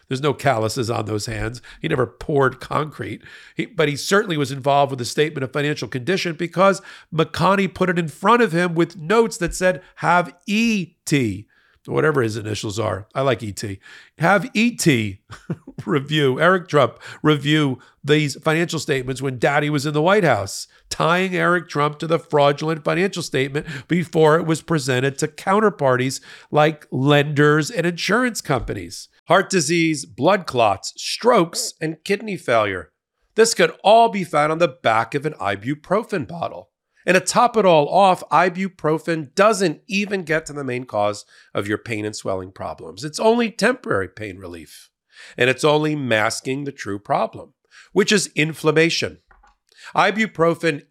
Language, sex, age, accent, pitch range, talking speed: English, male, 50-69, American, 130-175 Hz, 155 wpm